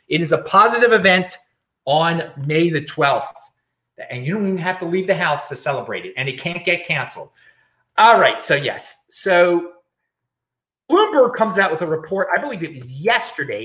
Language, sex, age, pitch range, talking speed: English, male, 30-49, 140-200 Hz, 185 wpm